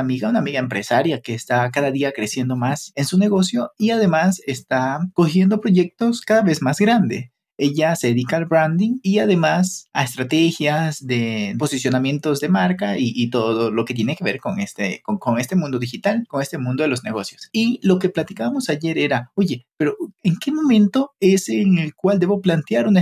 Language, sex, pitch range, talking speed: Spanish, male, 130-190 Hz, 195 wpm